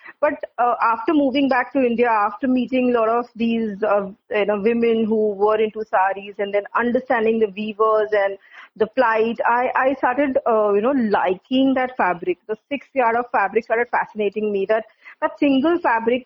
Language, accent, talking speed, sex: English, Indian, 185 wpm, female